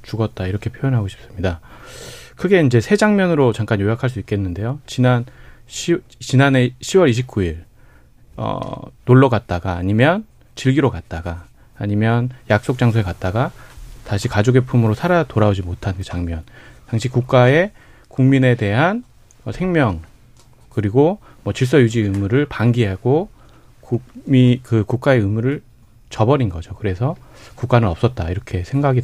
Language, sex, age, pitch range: Korean, male, 30-49, 105-130 Hz